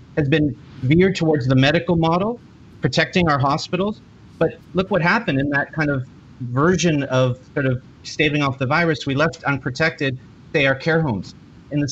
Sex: male